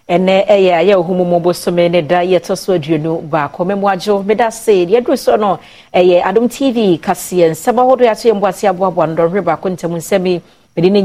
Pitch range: 175-230 Hz